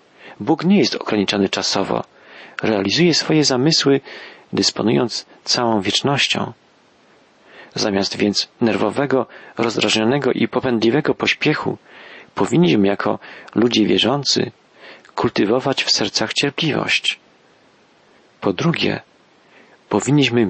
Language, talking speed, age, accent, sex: Polish, 85 wpm, 40-59, native, male